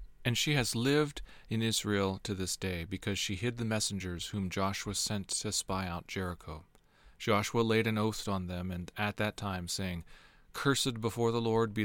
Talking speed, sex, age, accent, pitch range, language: 185 wpm, male, 40-59, American, 95-115 Hz, English